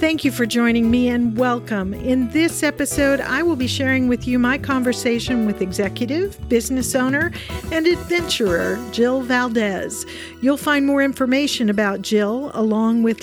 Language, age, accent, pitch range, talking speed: English, 50-69, American, 210-275 Hz, 155 wpm